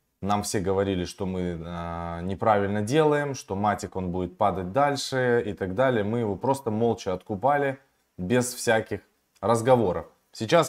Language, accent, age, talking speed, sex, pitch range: Russian, native, 20-39, 145 wpm, male, 100-125 Hz